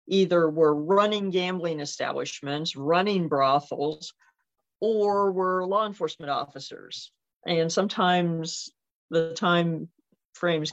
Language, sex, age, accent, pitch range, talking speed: English, female, 50-69, American, 155-190 Hz, 95 wpm